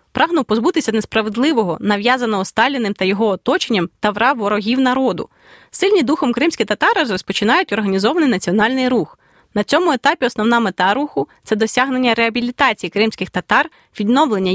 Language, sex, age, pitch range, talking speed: Ukrainian, female, 20-39, 210-255 Hz, 135 wpm